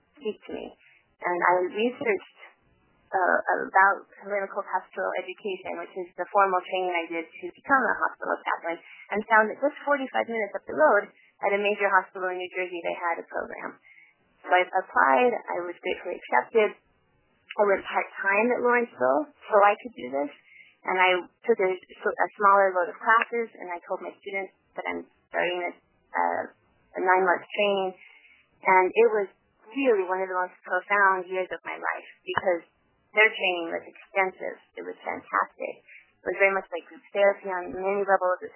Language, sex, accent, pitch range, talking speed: English, female, American, 180-215 Hz, 175 wpm